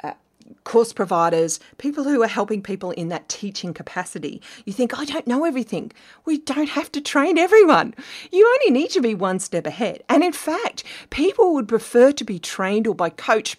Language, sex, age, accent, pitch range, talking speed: English, female, 40-59, Australian, 170-255 Hz, 190 wpm